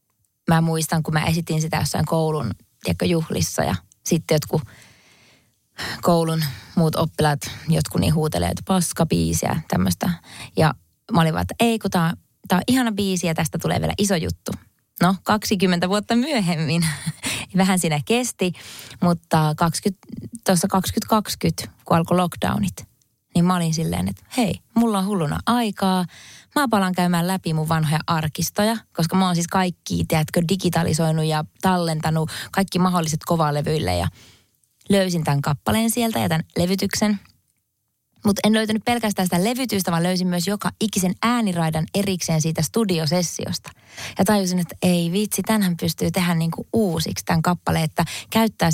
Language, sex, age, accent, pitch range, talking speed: Finnish, female, 20-39, native, 155-190 Hz, 145 wpm